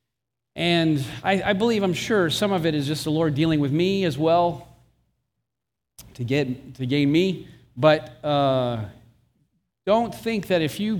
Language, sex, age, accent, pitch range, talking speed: English, male, 40-59, American, 125-170 Hz, 165 wpm